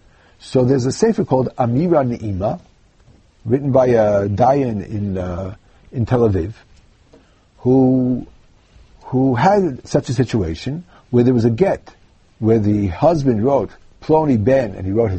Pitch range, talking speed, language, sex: 110-180 Hz, 145 wpm, English, male